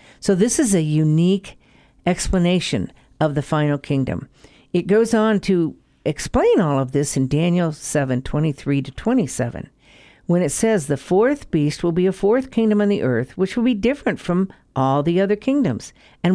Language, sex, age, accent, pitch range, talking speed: English, female, 50-69, American, 145-195 Hz, 180 wpm